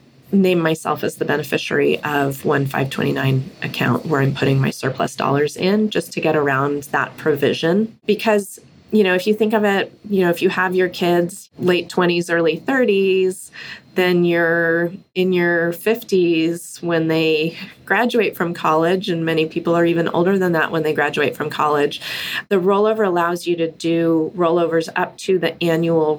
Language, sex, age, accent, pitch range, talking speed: English, female, 30-49, American, 145-180 Hz, 170 wpm